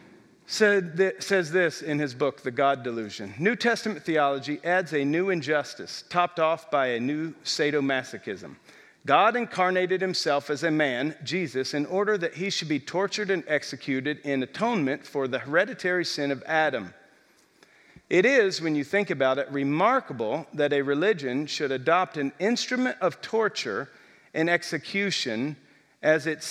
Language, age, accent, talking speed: English, 50-69, American, 150 wpm